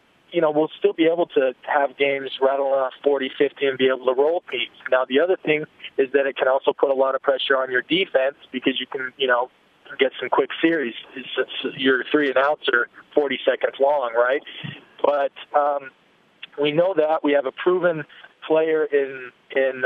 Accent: American